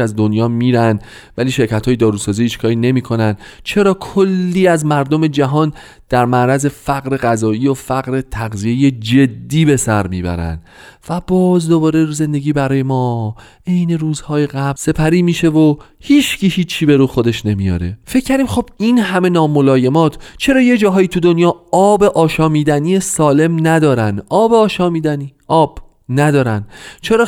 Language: Persian